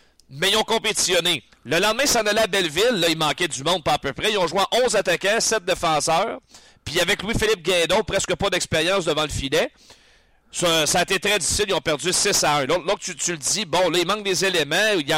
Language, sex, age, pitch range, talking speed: French, male, 40-59, 160-200 Hz, 230 wpm